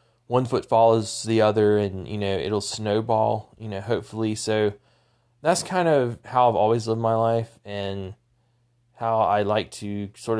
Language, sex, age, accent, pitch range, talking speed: English, male, 20-39, American, 105-120 Hz, 165 wpm